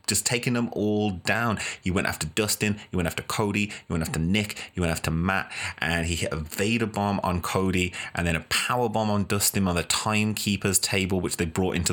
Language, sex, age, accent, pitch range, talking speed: English, male, 30-49, British, 85-105 Hz, 220 wpm